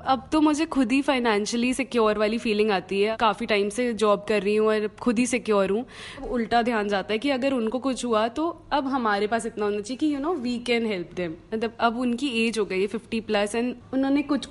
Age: 20-39